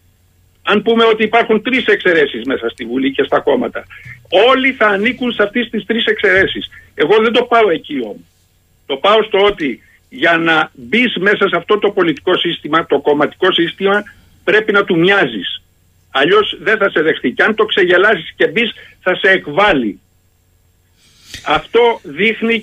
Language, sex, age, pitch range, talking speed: Greek, male, 60-79, 155-215 Hz, 160 wpm